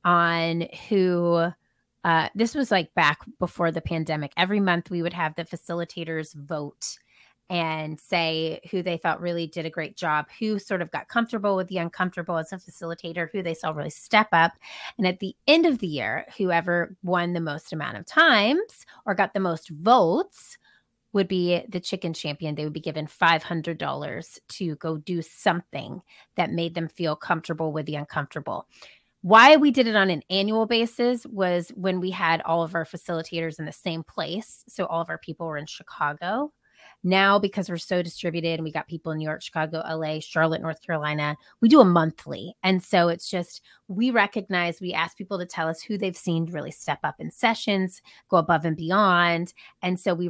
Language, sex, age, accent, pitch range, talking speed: English, female, 30-49, American, 160-190 Hz, 195 wpm